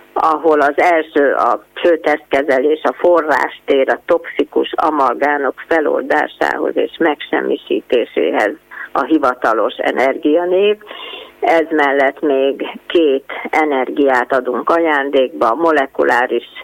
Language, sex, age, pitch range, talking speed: Hungarian, female, 30-49, 140-180 Hz, 90 wpm